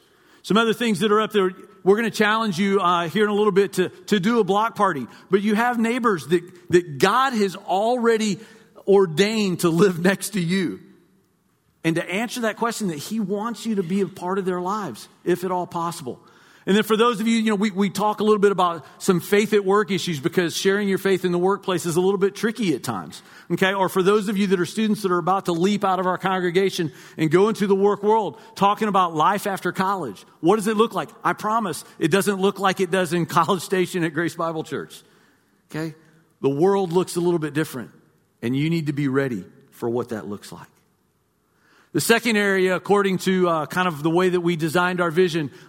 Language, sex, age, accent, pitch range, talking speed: English, male, 50-69, American, 170-205 Hz, 230 wpm